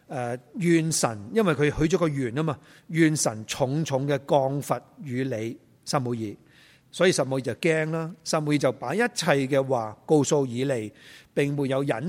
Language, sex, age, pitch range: Chinese, male, 30-49, 130-170 Hz